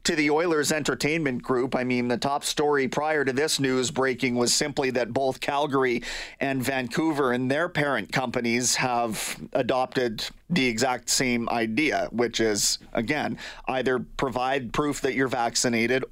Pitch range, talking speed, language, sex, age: 125-150 Hz, 155 wpm, English, male, 30-49